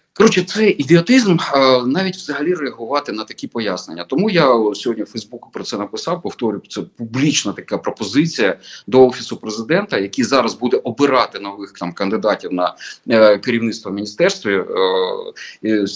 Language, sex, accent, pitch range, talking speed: Ukrainian, male, native, 115-170 Hz, 145 wpm